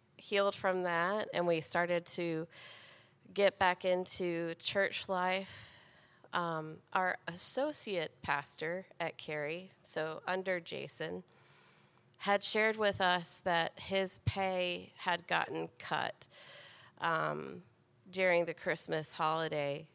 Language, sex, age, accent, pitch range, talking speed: English, female, 30-49, American, 160-185 Hz, 110 wpm